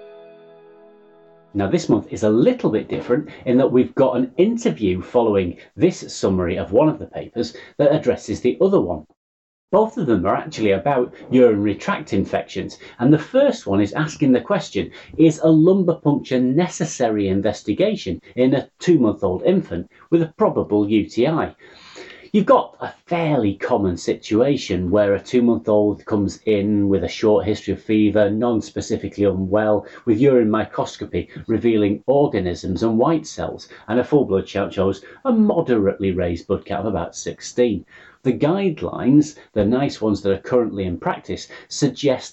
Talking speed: 160 wpm